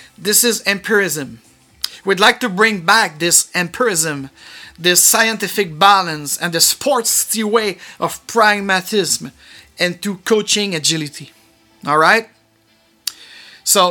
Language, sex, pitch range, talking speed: English, male, 160-215 Hz, 110 wpm